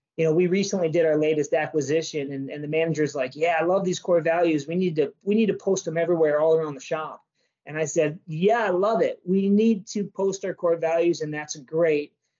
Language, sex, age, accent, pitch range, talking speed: English, male, 30-49, American, 150-170 Hz, 235 wpm